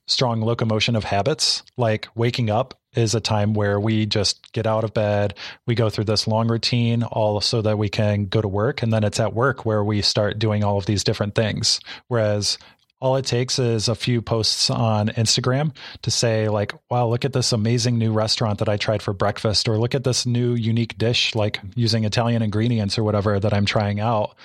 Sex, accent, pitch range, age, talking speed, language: male, American, 105-125 Hz, 30-49, 215 wpm, English